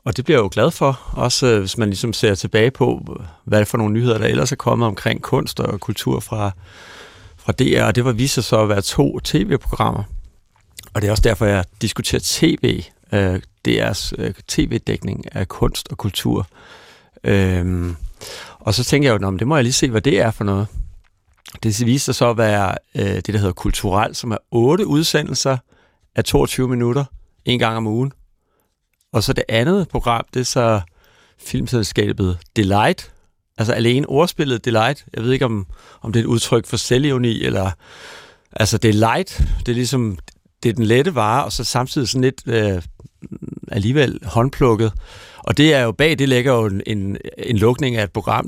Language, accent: Danish, native